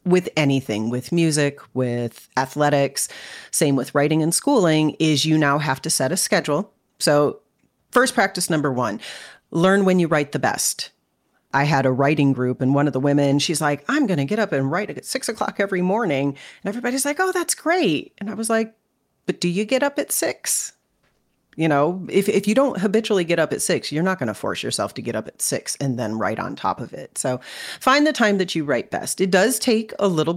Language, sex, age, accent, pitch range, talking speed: English, female, 40-59, American, 140-210 Hz, 225 wpm